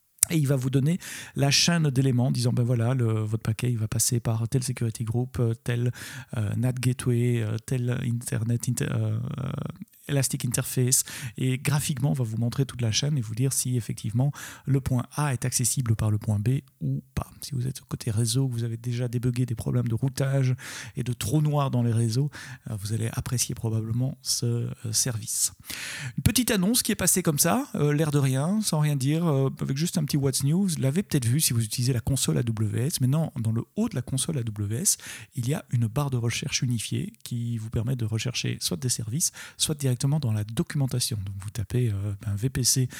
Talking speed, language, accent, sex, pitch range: 210 wpm, French, French, male, 115-140 Hz